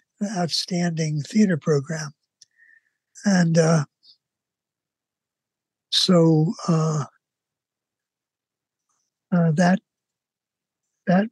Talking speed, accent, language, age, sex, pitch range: 55 wpm, American, English, 60-79, male, 155-200 Hz